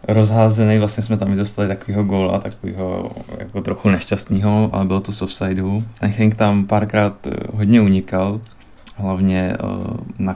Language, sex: Czech, male